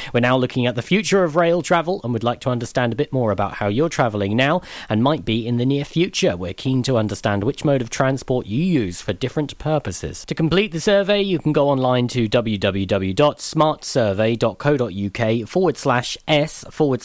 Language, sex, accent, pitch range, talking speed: English, male, British, 110-145 Hz, 195 wpm